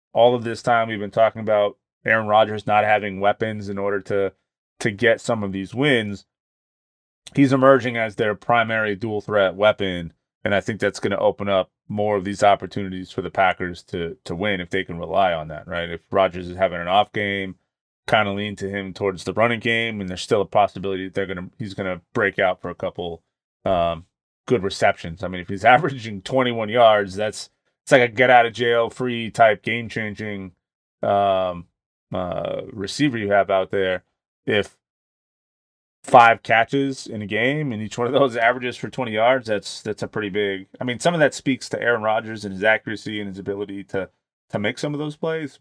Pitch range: 95-115 Hz